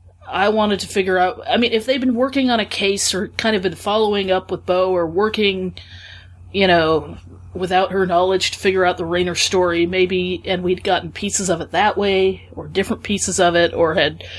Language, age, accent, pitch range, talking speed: English, 30-49, American, 155-195 Hz, 215 wpm